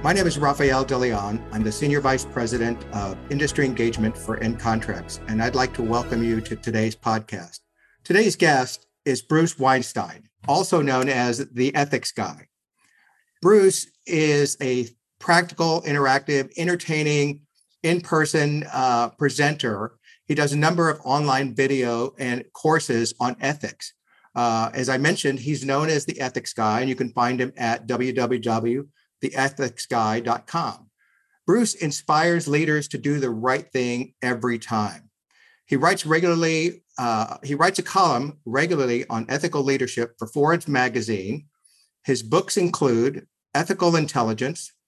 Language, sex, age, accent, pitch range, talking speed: English, male, 50-69, American, 120-155 Hz, 140 wpm